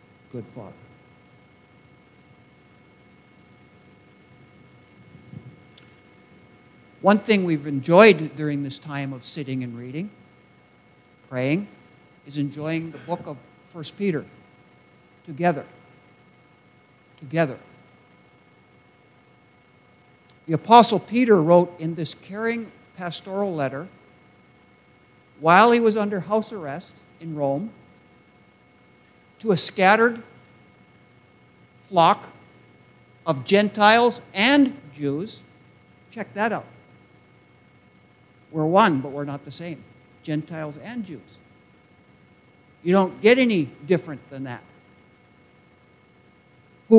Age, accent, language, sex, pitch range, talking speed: 60-79, American, English, male, 140-215 Hz, 90 wpm